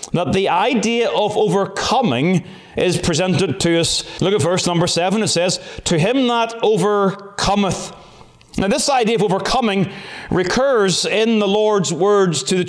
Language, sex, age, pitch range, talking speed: English, male, 30-49, 175-210 Hz, 150 wpm